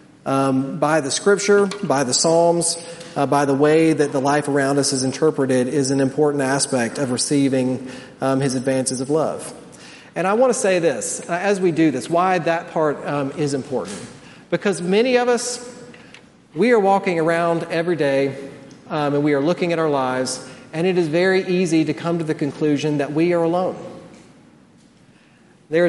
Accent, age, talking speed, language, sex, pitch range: American, 40-59, 180 wpm, English, male, 140-170 Hz